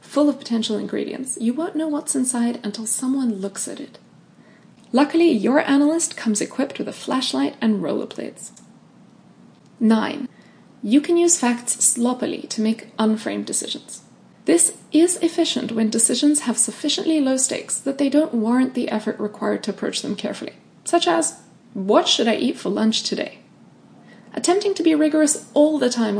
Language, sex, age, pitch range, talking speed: English, female, 20-39, 220-295 Hz, 165 wpm